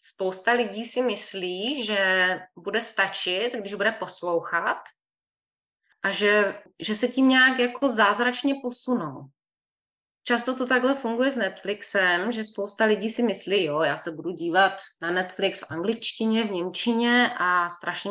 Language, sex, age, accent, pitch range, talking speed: Czech, female, 20-39, native, 190-245 Hz, 145 wpm